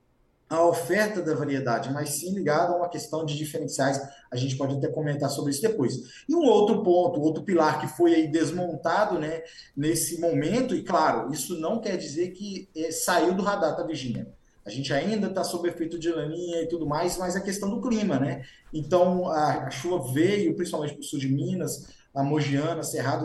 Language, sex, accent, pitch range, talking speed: Portuguese, male, Brazilian, 150-185 Hz, 205 wpm